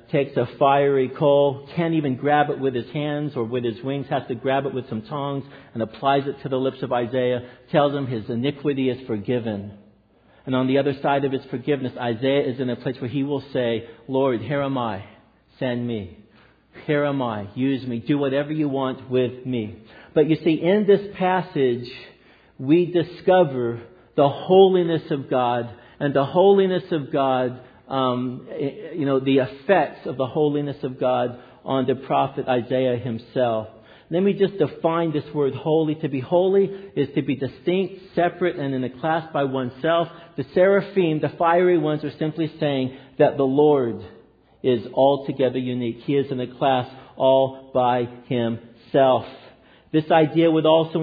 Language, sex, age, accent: English, male, 50-69, American